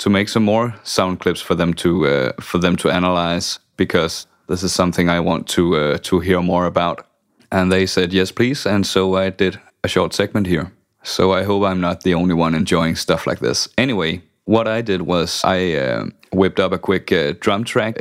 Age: 30-49